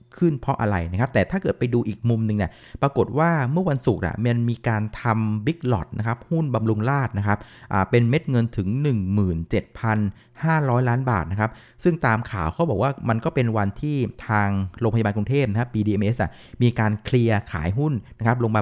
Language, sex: Thai, male